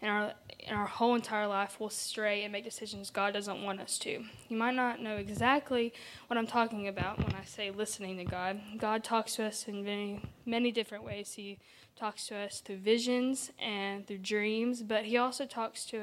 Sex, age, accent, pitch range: female, 10-29, American, 200-230 Hz